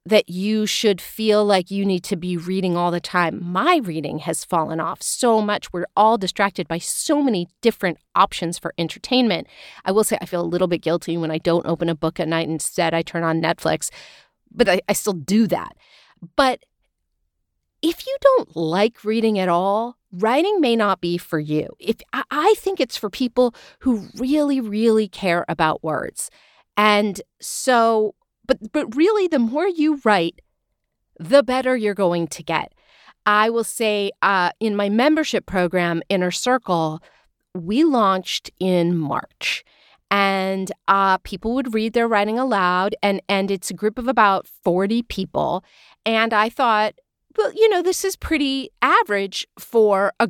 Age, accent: 40-59, American